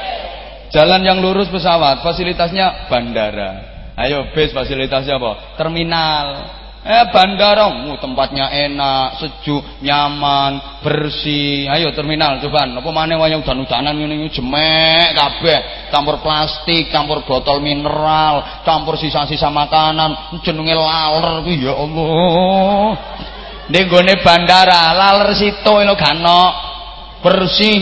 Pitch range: 140-180 Hz